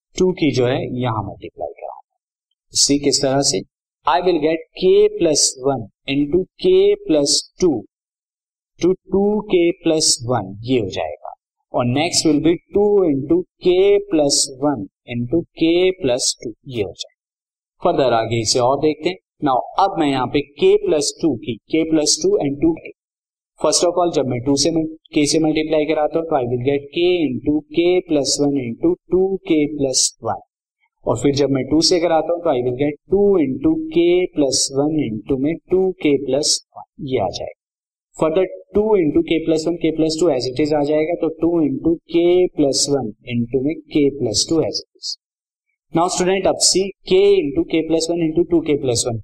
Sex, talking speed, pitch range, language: male, 60 wpm, 140-185 Hz, Hindi